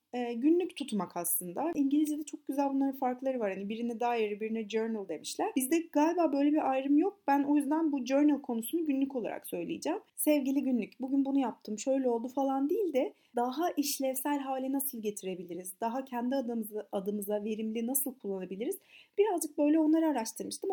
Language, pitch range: Turkish, 220-300 Hz